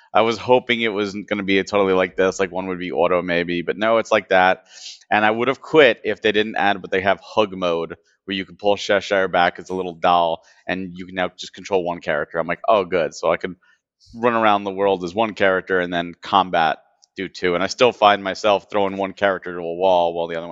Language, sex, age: English, male, 30-49